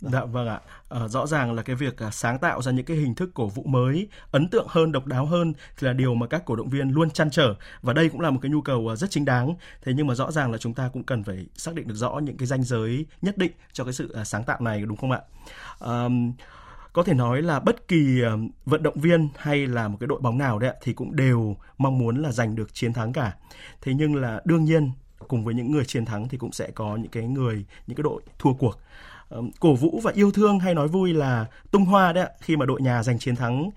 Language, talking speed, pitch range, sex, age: Vietnamese, 275 wpm, 120-160 Hz, male, 20-39